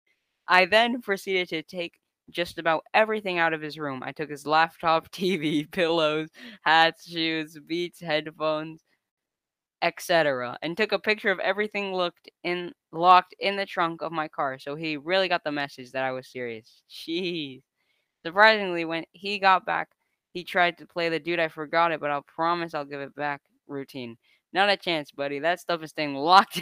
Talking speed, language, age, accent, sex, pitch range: 185 wpm, English, 10-29, American, female, 150-180 Hz